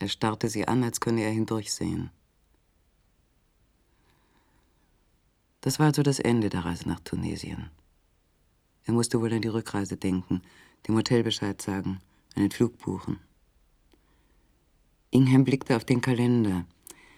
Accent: German